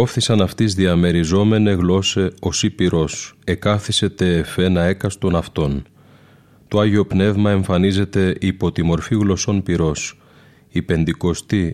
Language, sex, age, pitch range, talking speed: Greek, male, 30-49, 85-100 Hz, 120 wpm